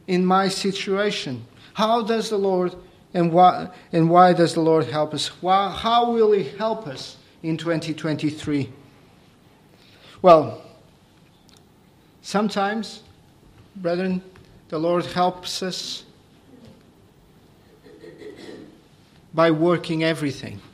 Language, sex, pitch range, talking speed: English, male, 160-205 Hz, 100 wpm